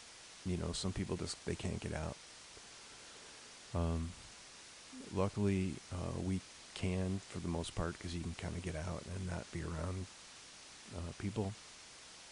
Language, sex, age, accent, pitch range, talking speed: English, male, 40-59, American, 85-100 Hz, 150 wpm